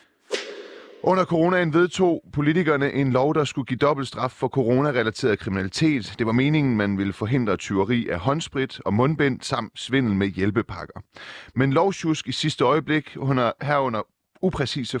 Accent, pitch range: native, 110-145 Hz